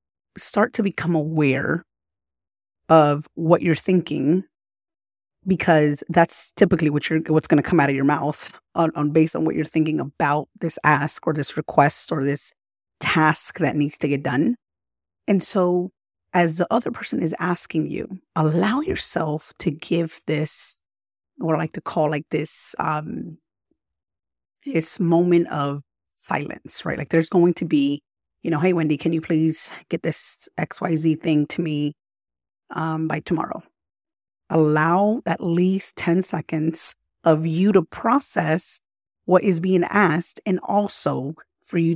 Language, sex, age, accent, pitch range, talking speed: English, female, 30-49, American, 150-175 Hz, 155 wpm